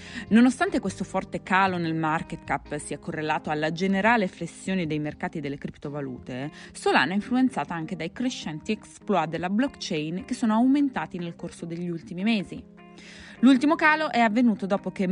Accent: native